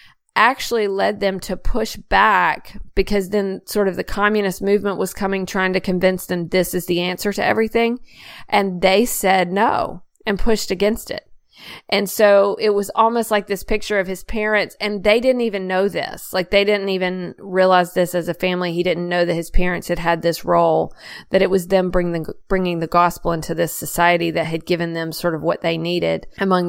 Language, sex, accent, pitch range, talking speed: English, female, American, 175-200 Hz, 205 wpm